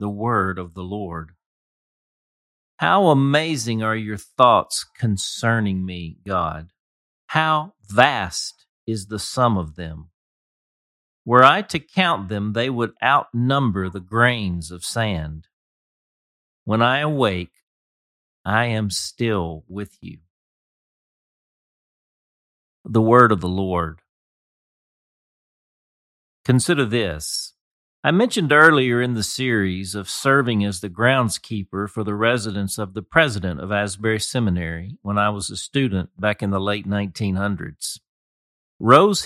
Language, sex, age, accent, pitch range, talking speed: English, male, 40-59, American, 95-125 Hz, 120 wpm